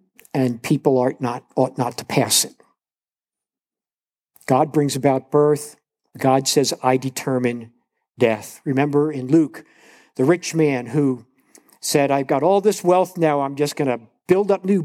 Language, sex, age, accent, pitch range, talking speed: English, male, 50-69, American, 125-150 Hz, 160 wpm